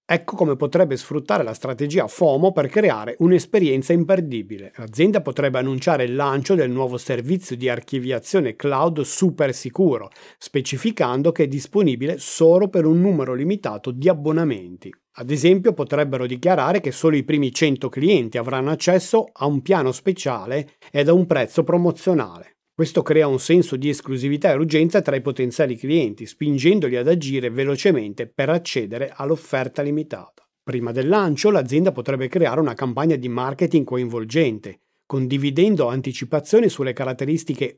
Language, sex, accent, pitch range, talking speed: Italian, male, native, 130-170 Hz, 145 wpm